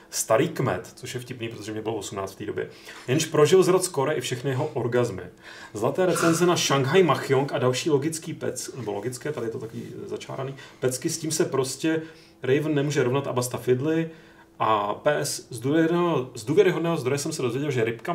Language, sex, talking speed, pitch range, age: Czech, male, 190 wpm, 125-155 Hz, 30-49